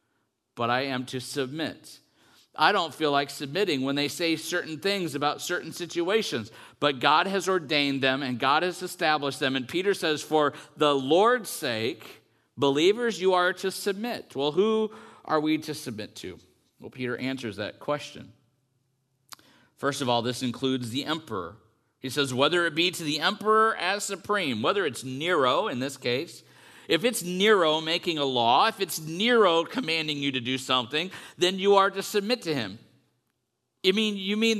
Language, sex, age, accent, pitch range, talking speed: English, male, 50-69, American, 130-185 Hz, 170 wpm